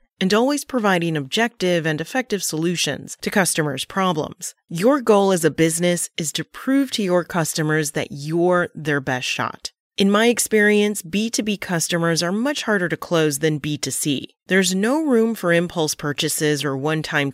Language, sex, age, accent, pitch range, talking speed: English, female, 30-49, American, 155-210 Hz, 160 wpm